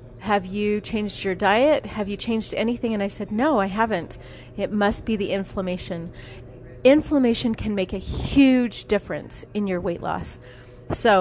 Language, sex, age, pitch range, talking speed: English, female, 30-49, 180-210 Hz, 165 wpm